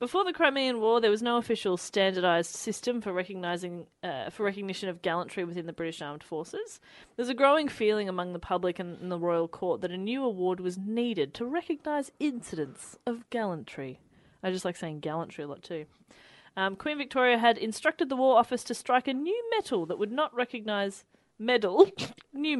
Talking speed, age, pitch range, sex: 190 wpm, 30-49, 175-245 Hz, female